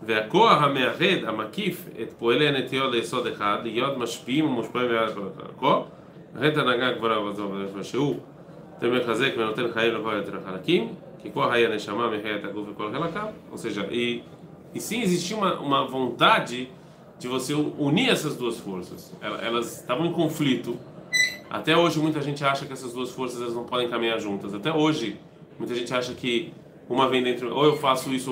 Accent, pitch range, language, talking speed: Brazilian, 120-160 Hz, Portuguese, 70 wpm